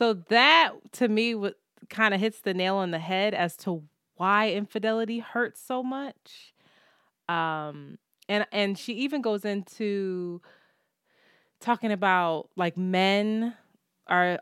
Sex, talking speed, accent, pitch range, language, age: female, 130 wpm, American, 170-215 Hz, English, 20-39